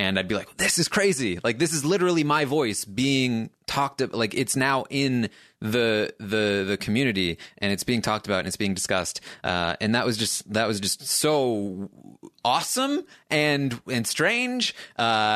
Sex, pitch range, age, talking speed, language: male, 100-130 Hz, 20-39, 185 wpm, English